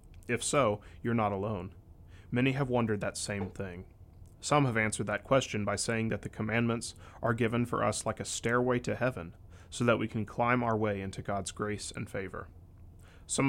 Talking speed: 190 wpm